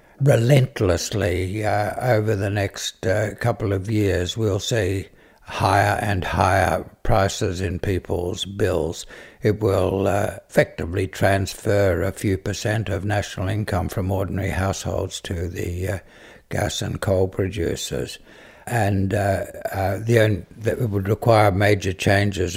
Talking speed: 130 wpm